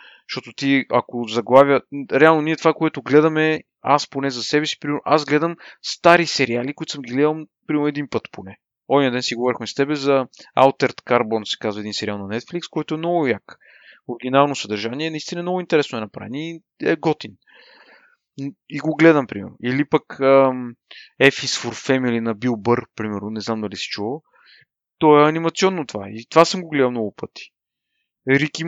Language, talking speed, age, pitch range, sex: Bulgarian, 180 wpm, 30-49, 125-165 Hz, male